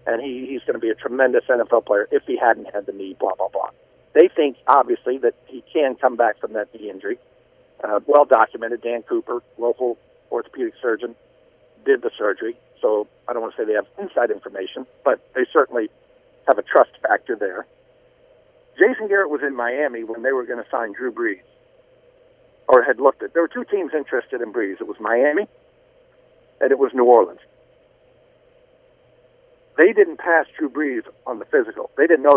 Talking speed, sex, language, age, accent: 190 wpm, male, English, 50-69, American